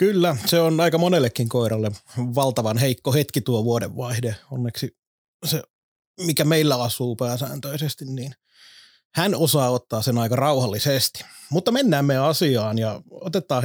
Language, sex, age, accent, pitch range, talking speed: Finnish, male, 30-49, native, 120-150 Hz, 130 wpm